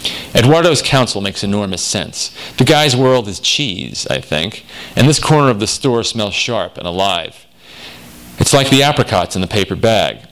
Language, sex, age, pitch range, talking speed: English, male, 40-59, 95-125 Hz, 175 wpm